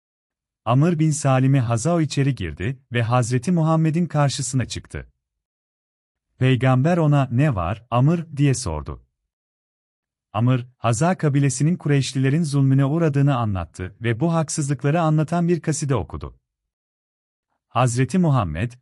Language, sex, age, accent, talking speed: Turkish, male, 40-59, native, 110 wpm